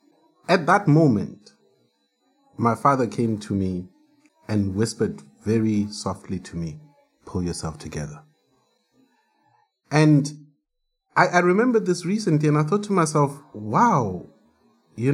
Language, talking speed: English, 120 wpm